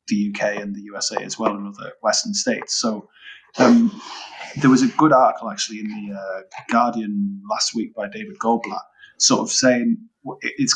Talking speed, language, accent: 180 wpm, English, British